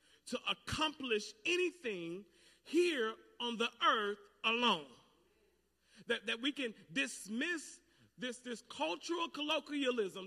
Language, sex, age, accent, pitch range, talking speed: English, male, 40-59, American, 220-285 Hz, 100 wpm